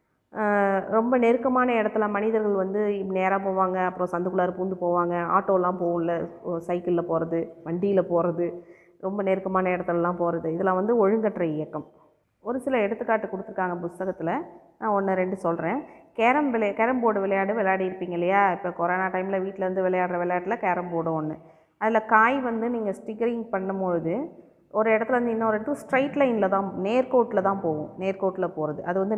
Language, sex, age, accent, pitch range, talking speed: Tamil, female, 20-39, native, 180-225 Hz, 150 wpm